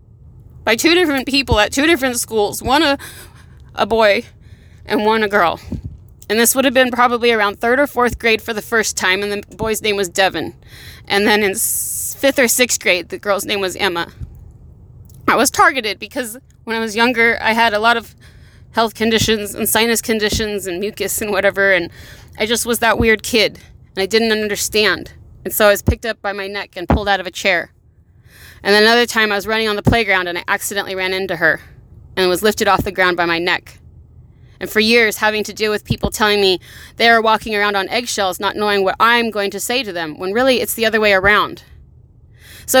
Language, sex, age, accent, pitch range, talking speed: English, female, 30-49, American, 200-235 Hz, 215 wpm